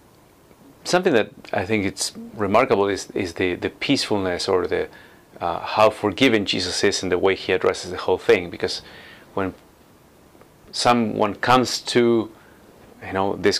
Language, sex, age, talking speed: English, male, 30-49, 150 wpm